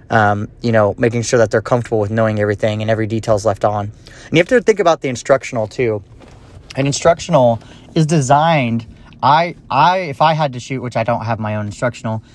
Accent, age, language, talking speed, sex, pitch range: American, 30-49, English, 215 wpm, male, 115-140 Hz